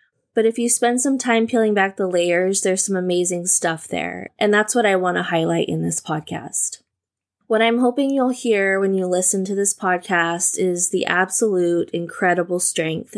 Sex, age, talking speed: female, 20-39, 185 wpm